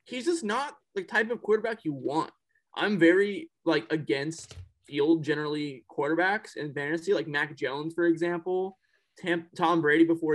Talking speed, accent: 155 wpm, American